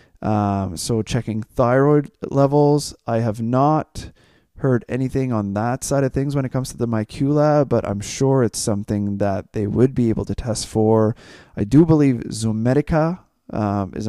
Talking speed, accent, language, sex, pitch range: 175 wpm, American, English, male, 100-130 Hz